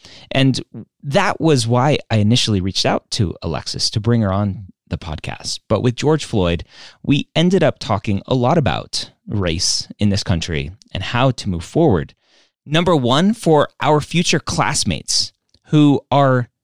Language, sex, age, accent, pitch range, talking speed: English, male, 30-49, American, 100-140 Hz, 160 wpm